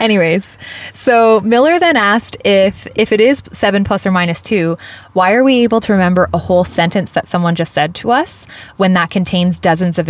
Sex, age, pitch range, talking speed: female, 20-39, 160-190 Hz, 200 wpm